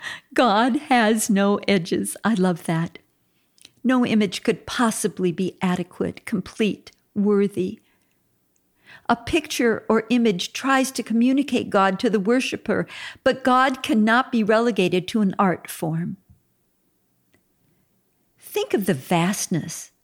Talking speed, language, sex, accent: 115 wpm, English, female, American